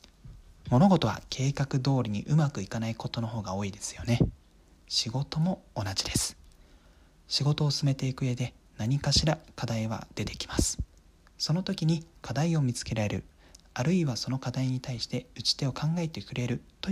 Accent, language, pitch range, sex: native, Japanese, 90-140 Hz, male